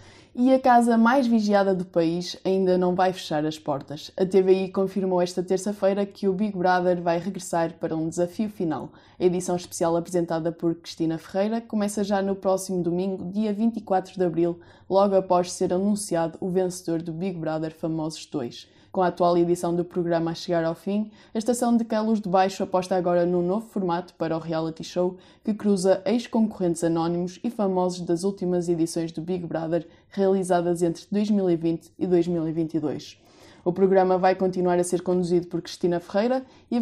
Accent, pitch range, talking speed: Brazilian, 175-200 Hz, 175 wpm